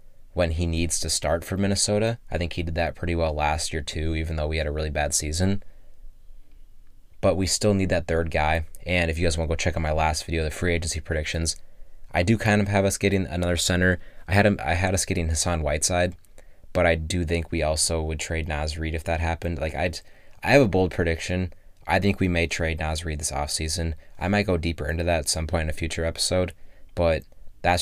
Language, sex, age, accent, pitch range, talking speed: English, male, 20-39, American, 80-95 Hz, 235 wpm